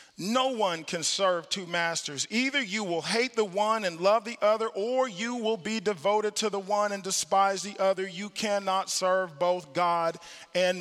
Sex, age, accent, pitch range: male, 40-59, American, 175-220 Hz